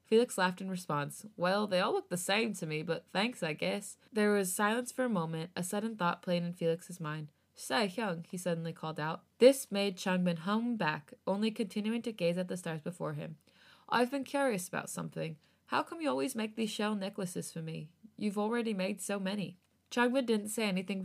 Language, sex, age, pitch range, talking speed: English, female, 20-39, 170-215 Hz, 205 wpm